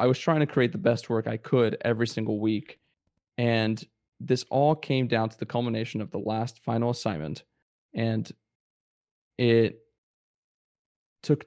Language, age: English, 20-39